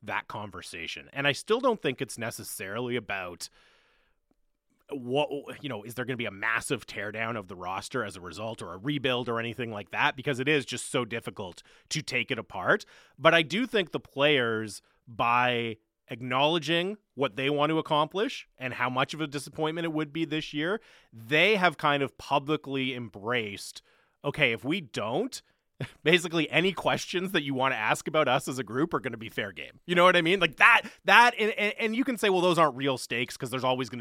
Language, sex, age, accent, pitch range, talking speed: English, male, 30-49, American, 120-155 Hz, 210 wpm